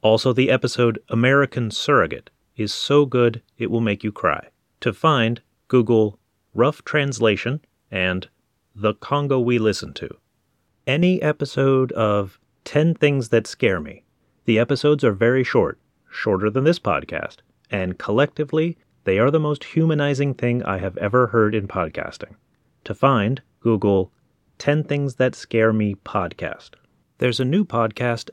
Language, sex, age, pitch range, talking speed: English, male, 30-49, 110-145 Hz, 145 wpm